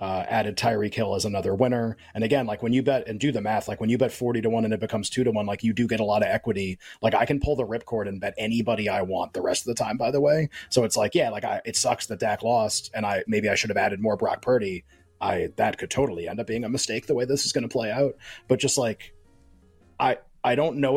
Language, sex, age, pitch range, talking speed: English, male, 30-49, 105-130 Hz, 290 wpm